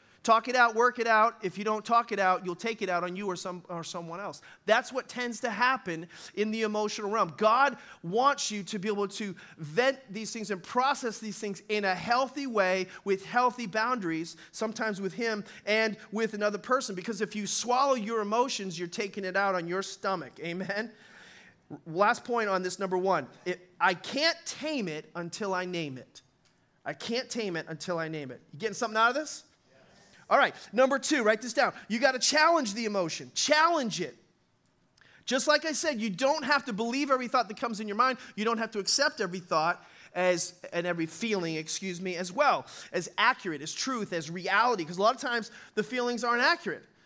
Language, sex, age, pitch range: English, male, 30-49, 190-255 Hz